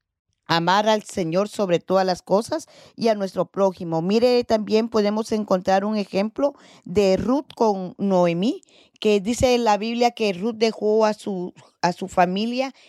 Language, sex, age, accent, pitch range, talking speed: Spanish, female, 40-59, American, 185-225 Hz, 155 wpm